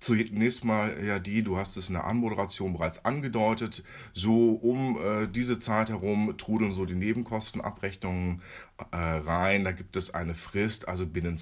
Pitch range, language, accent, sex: 100-135 Hz, German, German, male